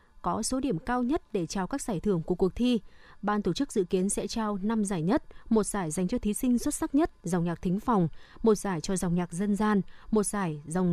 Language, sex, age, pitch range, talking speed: Vietnamese, female, 20-39, 185-250 Hz, 255 wpm